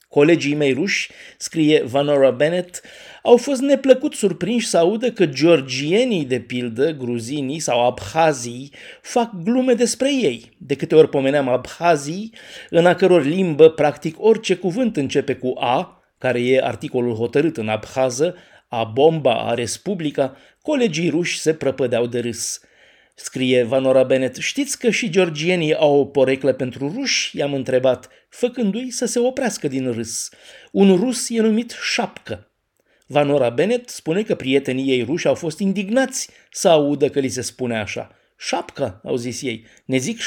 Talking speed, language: 150 wpm, Romanian